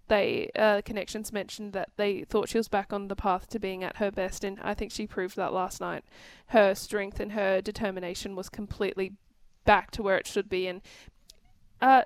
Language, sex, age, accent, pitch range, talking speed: English, female, 10-29, Australian, 200-230 Hz, 205 wpm